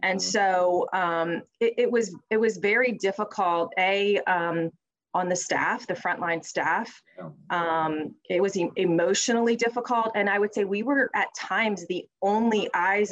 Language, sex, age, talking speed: English, female, 30-49, 160 wpm